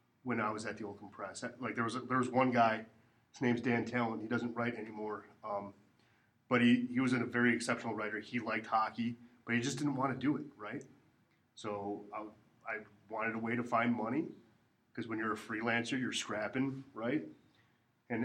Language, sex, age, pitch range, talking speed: English, male, 30-49, 110-125 Hz, 205 wpm